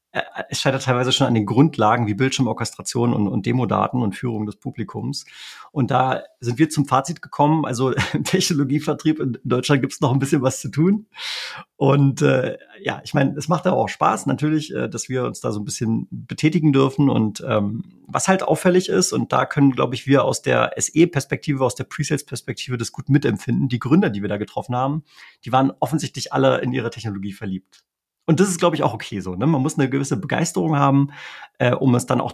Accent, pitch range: German, 120-150 Hz